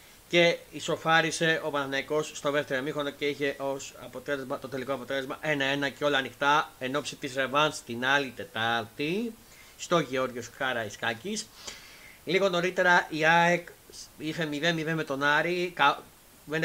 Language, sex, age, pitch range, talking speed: Greek, male, 30-49, 130-170 Hz, 135 wpm